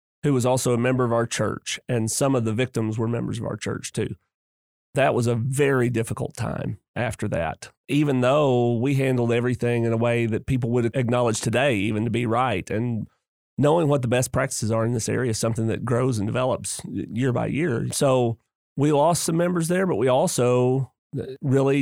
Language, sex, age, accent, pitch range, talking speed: English, male, 30-49, American, 115-130 Hz, 200 wpm